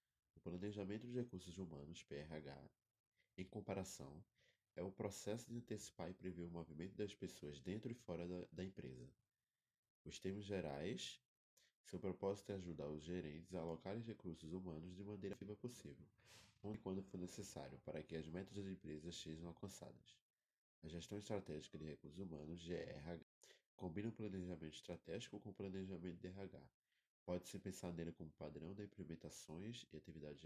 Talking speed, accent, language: 160 wpm, Brazilian, Portuguese